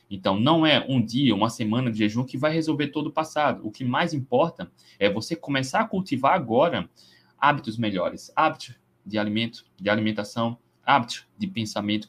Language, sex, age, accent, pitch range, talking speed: Portuguese, male, 20-39, Brazilian, 110-155 Hz, 175 wpm